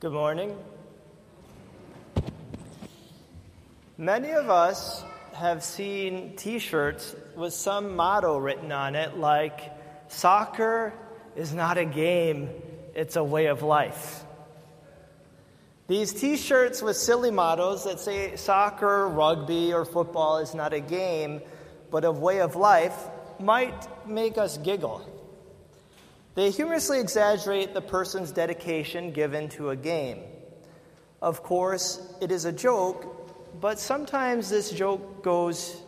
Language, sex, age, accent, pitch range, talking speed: English, male, 30-49, American, 165-215 Hz, 115 wpm